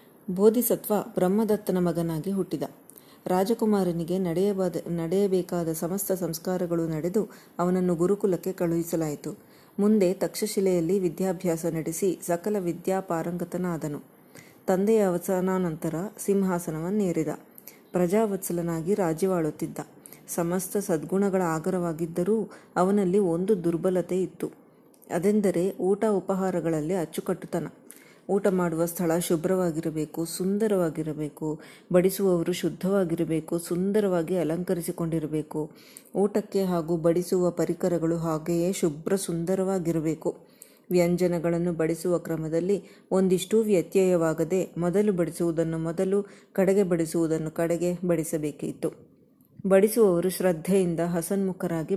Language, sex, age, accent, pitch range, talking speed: Kannada, female, 30-49, native, 170-195 Hz, 75 wpm